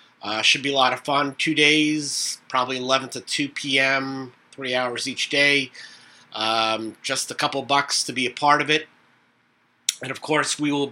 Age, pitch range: 30-49, 115-150 Hz